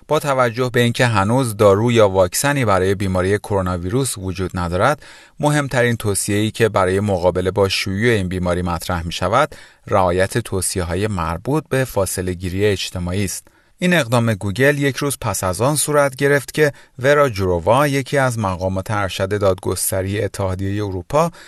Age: 30-49